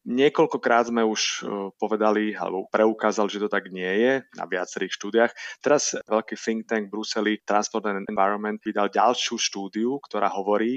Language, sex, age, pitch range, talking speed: Slovak, male, 30-49, 105-125 Hz, 155 wpm